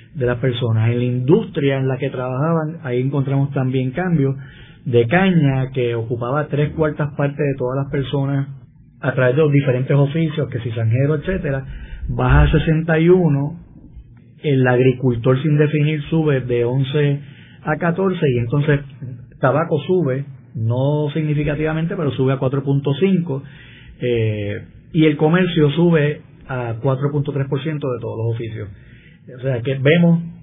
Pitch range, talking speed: 125-155 Hz, 145 wpm